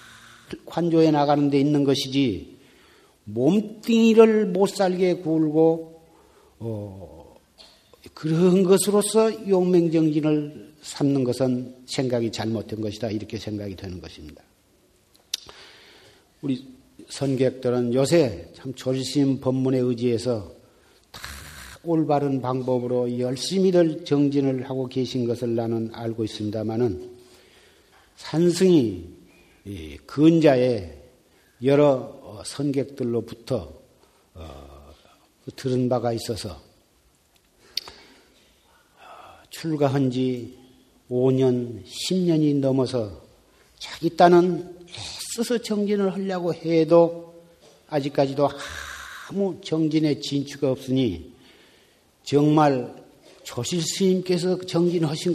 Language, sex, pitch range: Korean, male, 120-165 Hz